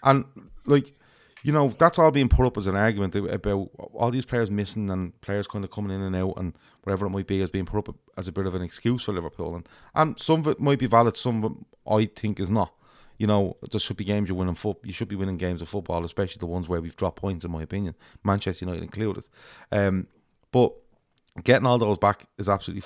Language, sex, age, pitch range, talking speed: English, male, 30-49, 95-115 Hz, 245 wpm